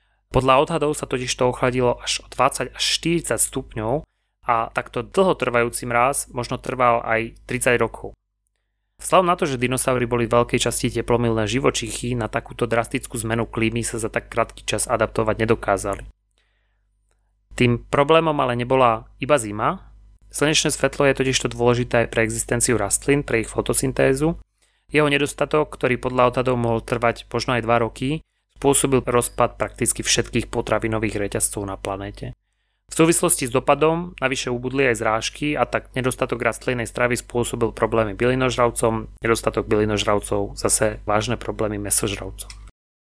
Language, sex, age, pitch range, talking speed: Slovak, male, 30-49, 110-130 Hz, 140 wpm